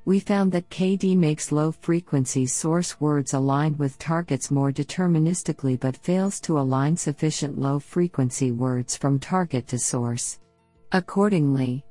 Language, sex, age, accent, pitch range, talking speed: English, female, 50-69, American, 140-160 Hz, 125 wpm